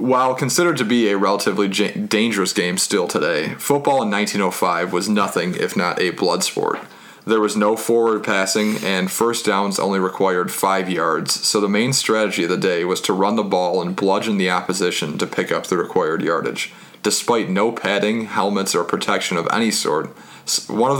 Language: English